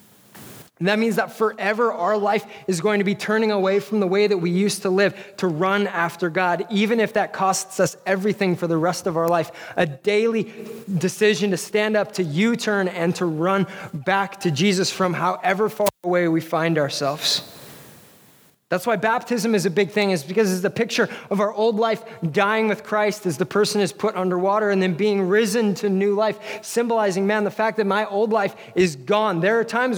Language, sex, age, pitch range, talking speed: English, male, 20-39, 170-210 Hz, 205 wpm